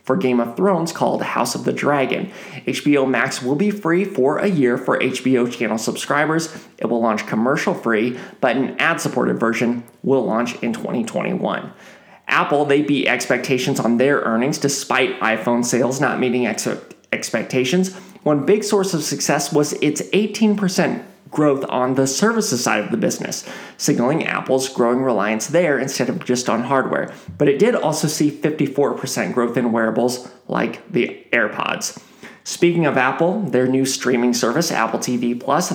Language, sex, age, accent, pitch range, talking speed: English, male, 30-49, American, 125-160 Hz, 160 wpm